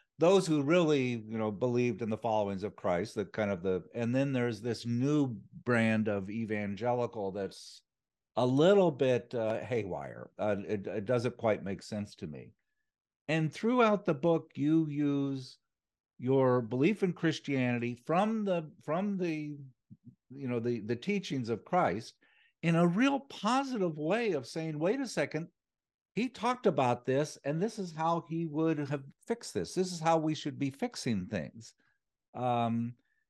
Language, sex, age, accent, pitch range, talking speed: English, male, 60-79, American, 120-175 Hz, 165 wpm